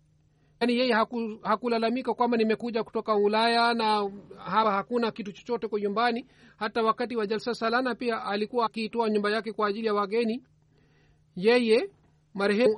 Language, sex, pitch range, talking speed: Swahili, male, 180-230 Hz, 150 wpm